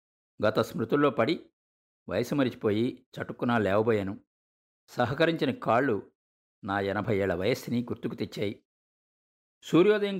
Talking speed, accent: 95 wpm, native